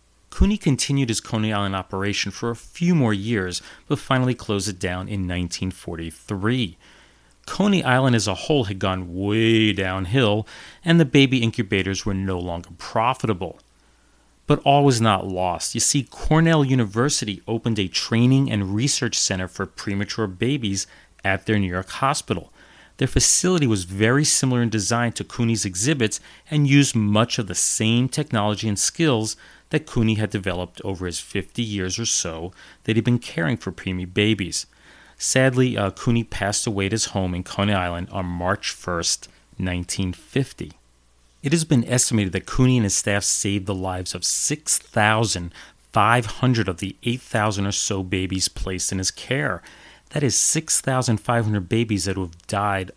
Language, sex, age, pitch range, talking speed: English, male, 30-49, 95-125 Hz, 160 wpm